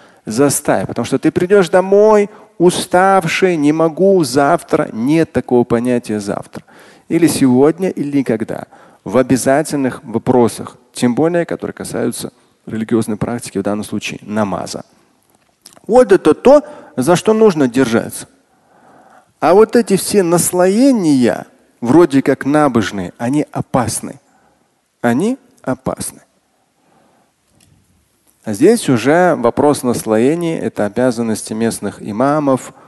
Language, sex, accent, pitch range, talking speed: Russian, male, native, 115-160 Hz, 110 wpm